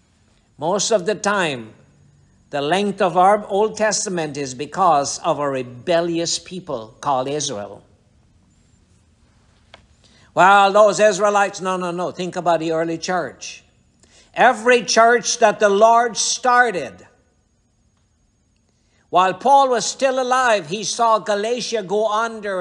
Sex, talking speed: male, 120 wpm